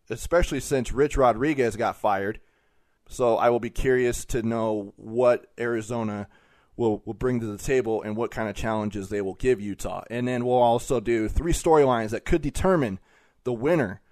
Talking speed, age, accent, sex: 180 wpm, 30-49, American, male